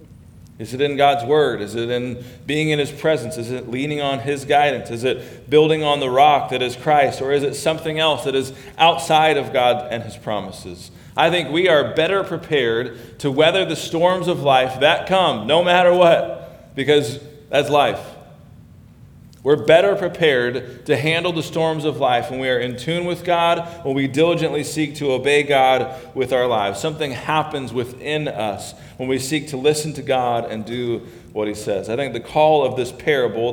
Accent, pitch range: American, 125-155 Hz